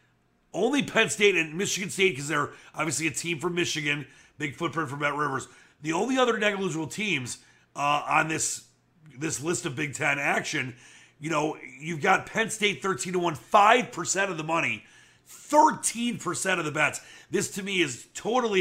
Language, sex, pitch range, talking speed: English, male, 140-190 Hz, 170 wpm